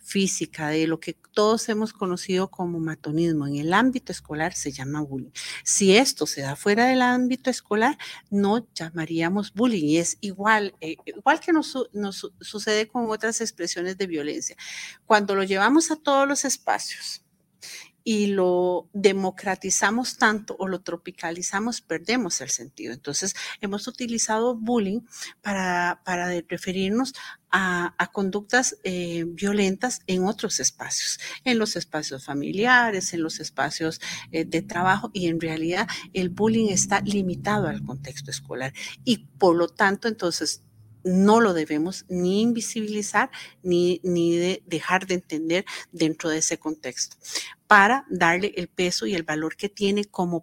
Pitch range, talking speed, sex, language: 165-215 Hz, 145 wpm, female, Spanish